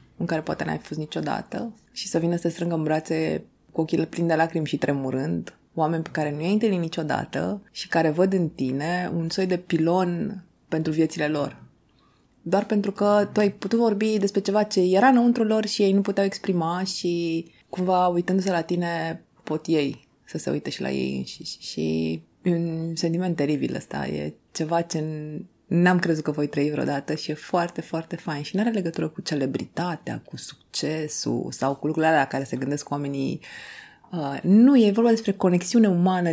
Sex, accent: female, native